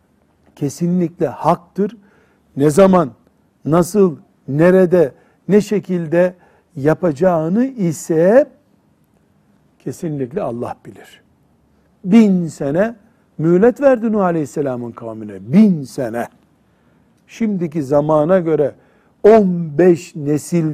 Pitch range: 145-185 Hz